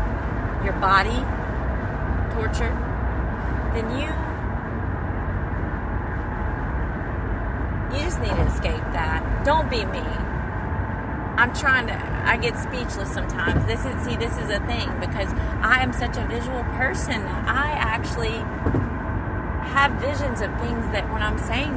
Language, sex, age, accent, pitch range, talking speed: English, female, 30-49, American, 85-100 Hz, 125 wpm